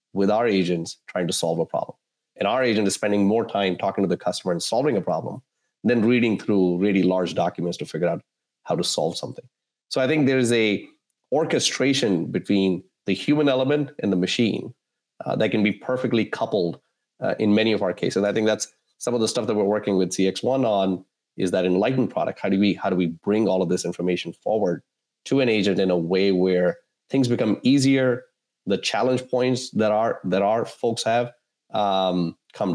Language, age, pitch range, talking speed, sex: English, 30-49, 90-120 Hz, 205 wpm, male